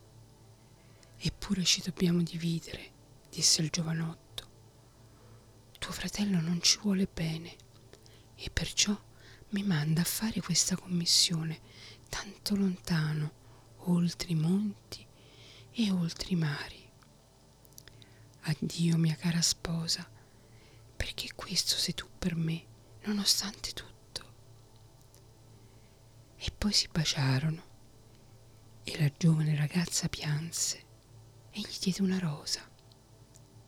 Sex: female